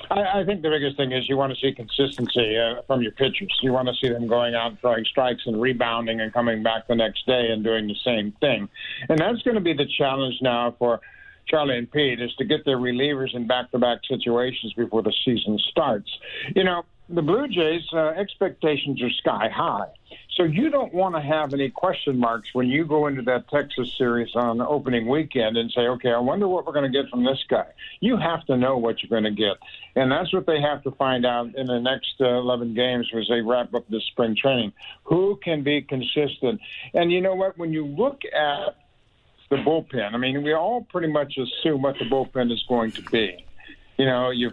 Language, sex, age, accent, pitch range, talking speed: English, male, 60-79, American, 120-150 Hz, 225 wpm